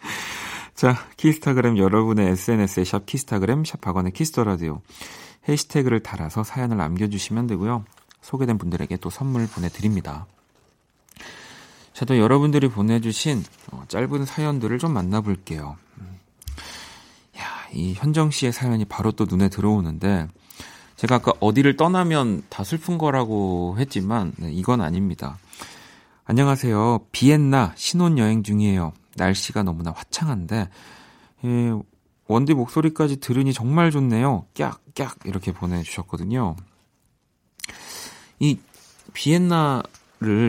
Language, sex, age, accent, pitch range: Korean, male, 40-59, native, 95-135 Hz